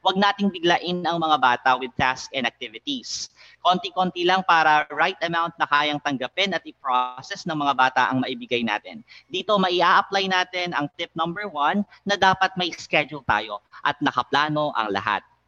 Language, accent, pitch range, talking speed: Filipino, native, 140-185 Hz, 165 wpm